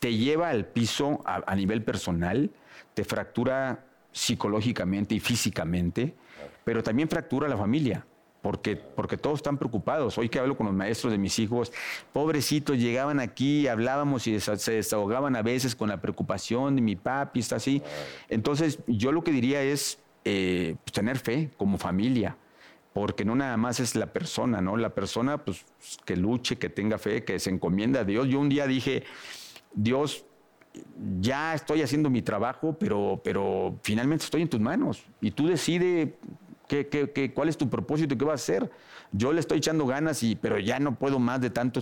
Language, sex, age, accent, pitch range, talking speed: Spanish, male, 50-69, Mexican, 110-145 Hz, 185 wpm